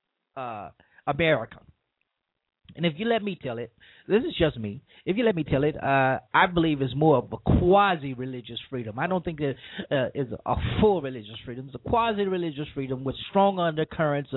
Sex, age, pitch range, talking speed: male, 30-49, 125-175 Hz, 185 wpm